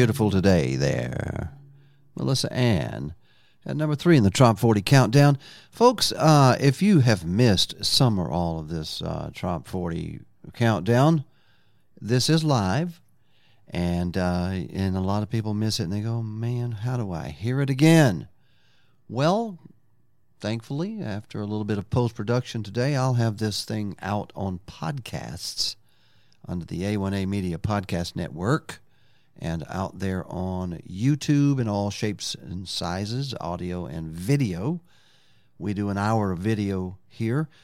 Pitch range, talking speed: 95-130 Hz, 145 wpm